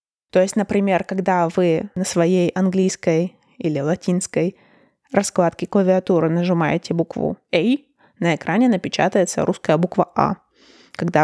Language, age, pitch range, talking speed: Russian, 20-39, 170-200 Hz, 115 wpm